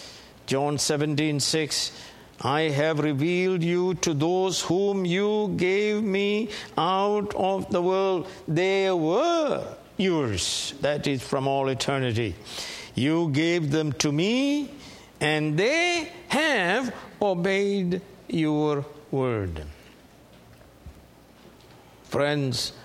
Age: 60-79